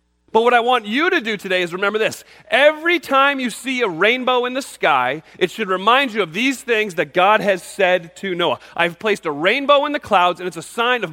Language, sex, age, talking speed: English, male, 40-59, 245 wpm